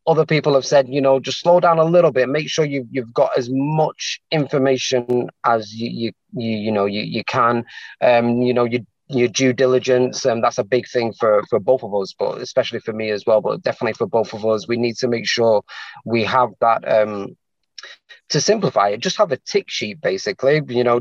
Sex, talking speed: male, 225 wpm